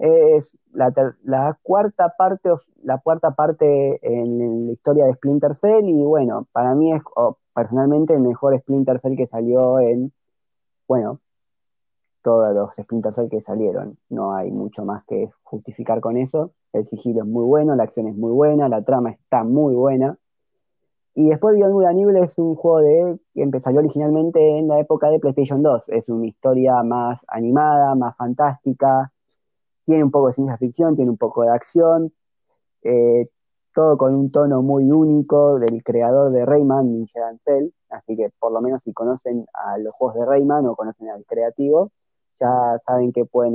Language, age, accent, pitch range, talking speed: Spanish, 20-39, Argentinian, 120-150 Hz, 180 wpm